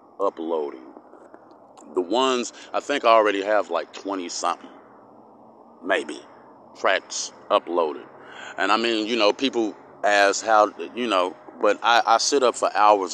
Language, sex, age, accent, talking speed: English, male, 30-49, American, 140 wpm